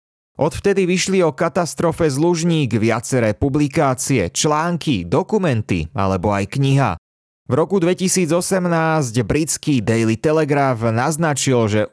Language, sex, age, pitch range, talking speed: Slovak, male, 30-49, 115-160 Hz, 100 wpm